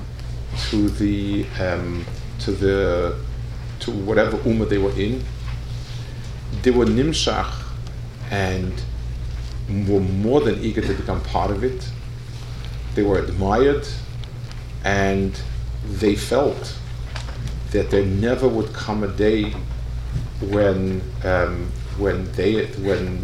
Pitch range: 95-120 Hz